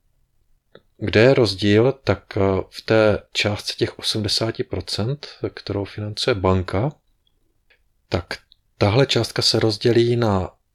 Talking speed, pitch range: 100 wpm, 100-115 Hz